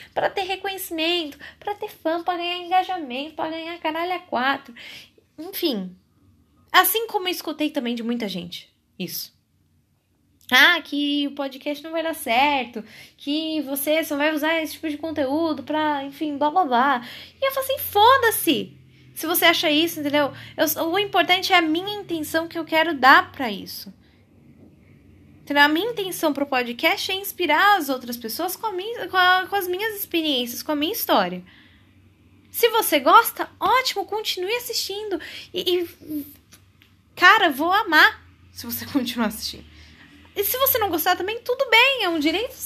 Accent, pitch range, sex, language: Brazilian, 280-370 Hz, female, Portuguese